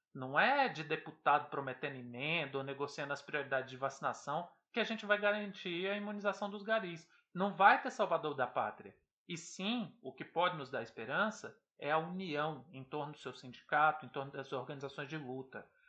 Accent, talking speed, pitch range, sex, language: Brazilian, 185 wpm, 150-215 Hz, male, Portuguese